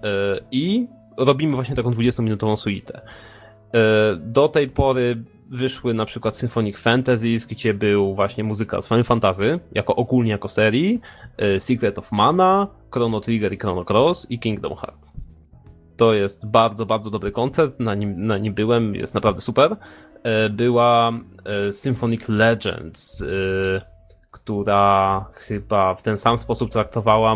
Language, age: Polish, 20-39